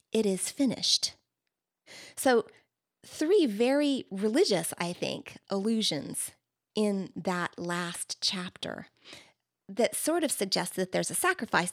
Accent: American